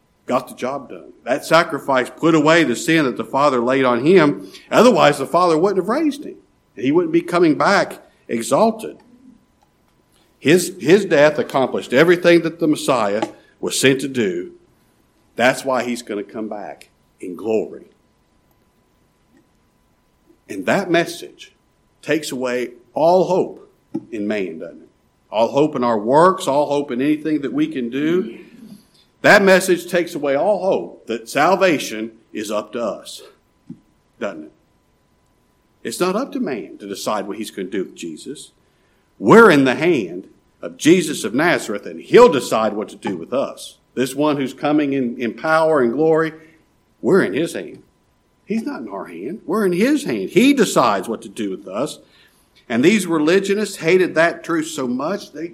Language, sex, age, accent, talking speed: English, male, 50-69, American, 170 wpm